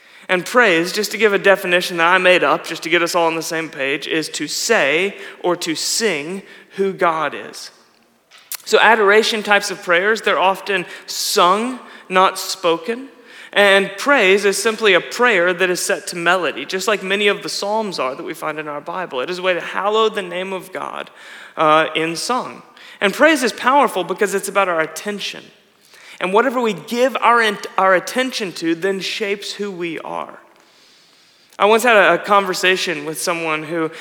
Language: English